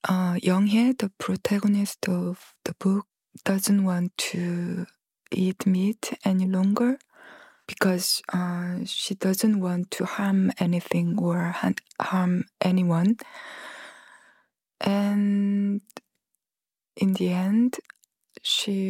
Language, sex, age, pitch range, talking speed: English, female, 20-39, 185-215 Hz, 95 wpm